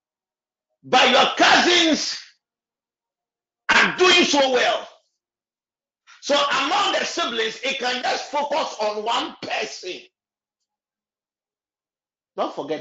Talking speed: 95 wpm